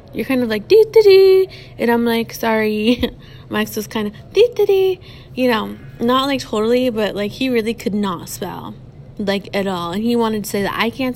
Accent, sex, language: American, female, English